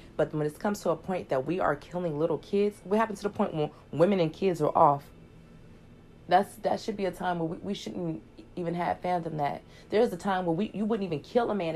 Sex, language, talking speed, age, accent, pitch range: female, English, 255 wpm, 30-49, American, 150-180 Hz